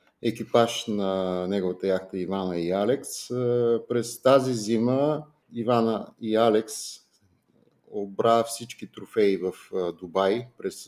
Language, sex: Bulgarian, male